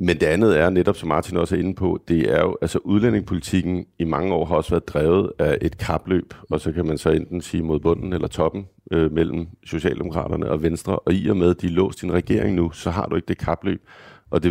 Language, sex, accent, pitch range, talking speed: Danish, male, native, 80-90 Hz, 250 wpm